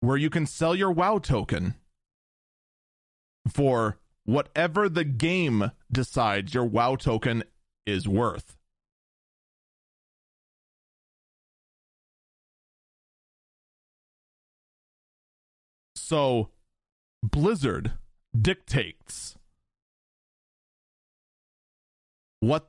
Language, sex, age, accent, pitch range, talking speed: English, male, 40-59, American, 110-175 Hz, 55 wpm